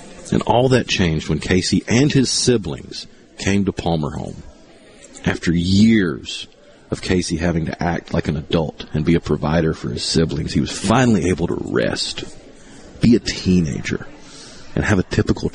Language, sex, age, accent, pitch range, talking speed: English, male, 40-59, American, 80-100 Hz, 165 wpm